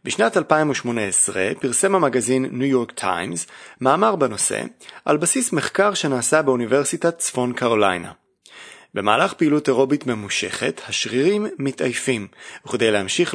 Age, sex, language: 30-49, male, Hebrew